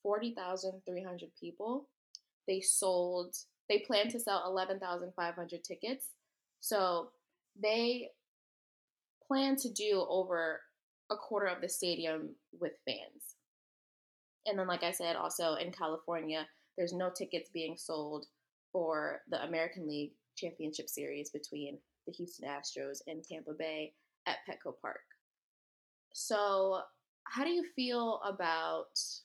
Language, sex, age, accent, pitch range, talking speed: English, female, 20-39, American, 170-210 Hz, 130 wpm